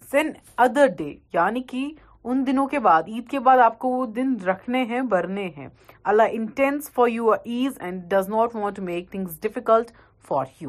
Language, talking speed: Urdu, 195 wpm